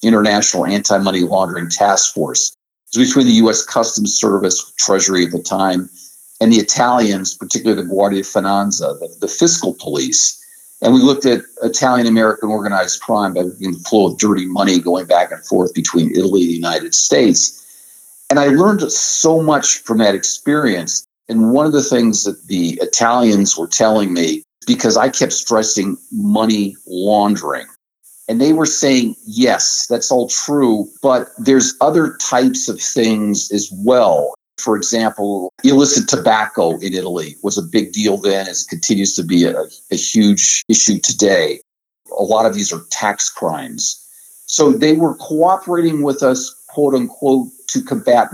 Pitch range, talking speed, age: 100-150 Hz, 165 wpm, 50-69